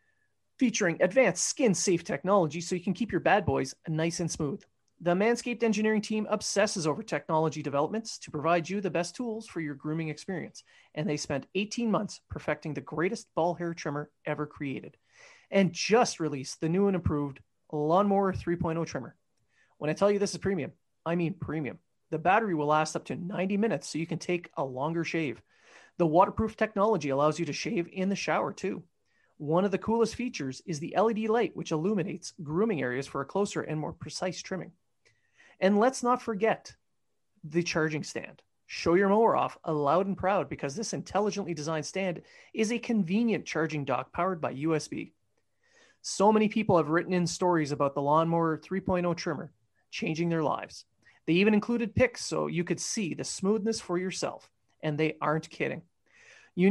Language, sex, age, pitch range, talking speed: English, male, 30-49, 155-210 Hz, 180 wpm